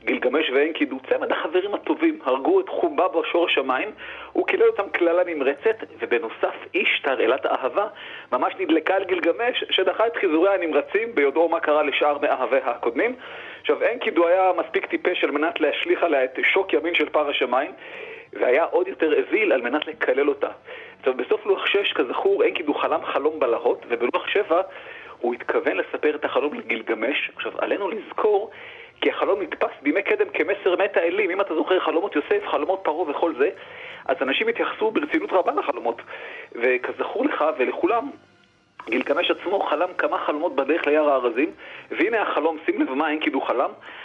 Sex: male